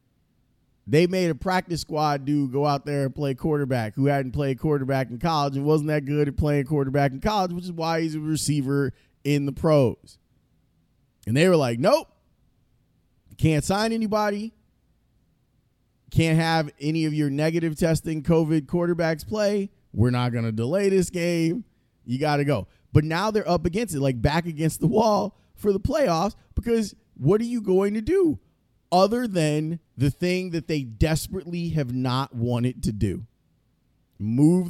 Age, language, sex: 20-39, English, male